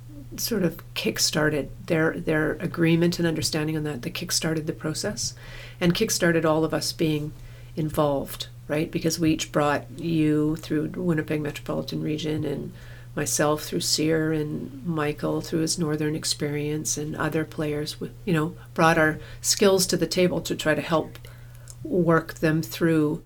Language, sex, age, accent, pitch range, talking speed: English, female, 40-59, American, 150-170 Hz, 155 wpm